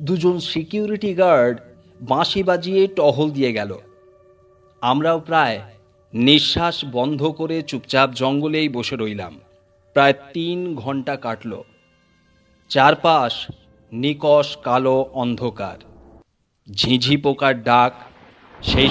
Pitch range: 120-175 Hz